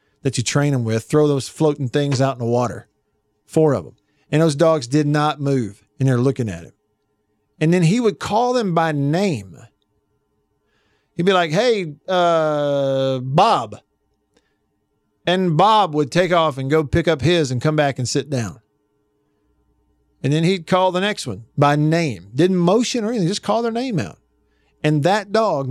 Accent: American